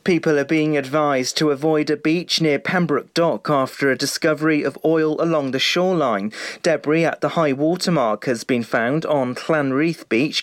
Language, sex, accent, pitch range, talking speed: English, male, British, 135-160 Hz, 175 wpm